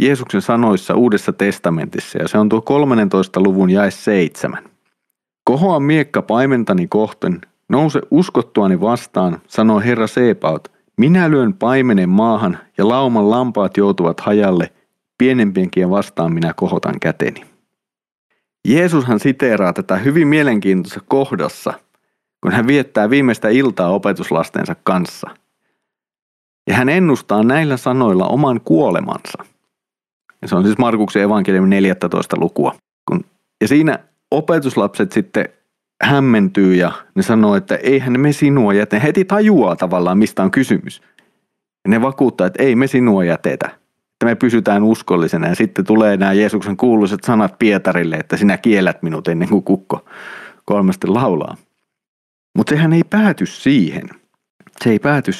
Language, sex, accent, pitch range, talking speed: Finnish, male, native, 100-135 Hz, 130 wpm